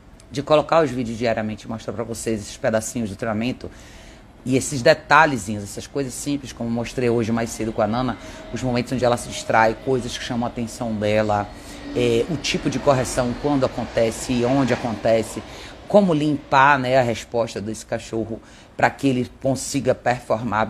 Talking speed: 175 wpm